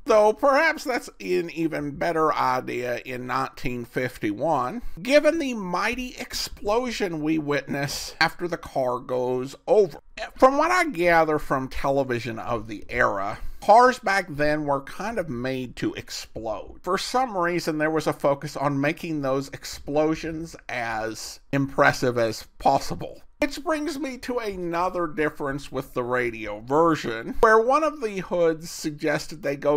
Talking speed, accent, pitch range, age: 145 wpm, American, 125-190 Hz, 50-69